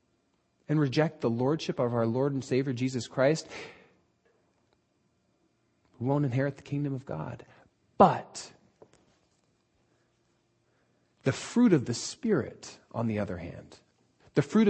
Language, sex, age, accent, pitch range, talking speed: English, male, 30-49, American, 115-155 Hz, 120 wpm